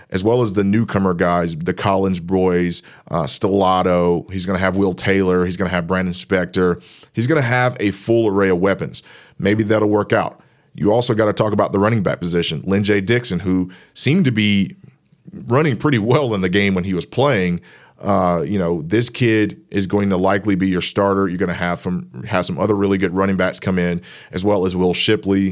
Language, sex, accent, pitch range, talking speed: English, male, American, 95-115 Hz, 210 wpm